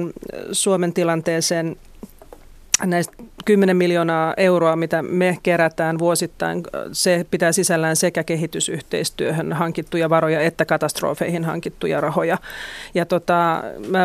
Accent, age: native, 30-49